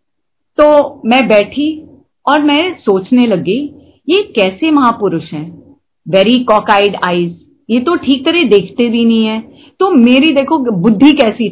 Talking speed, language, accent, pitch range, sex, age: 140 wpm, Hindi, native, 215-290 Hz, female, 30-49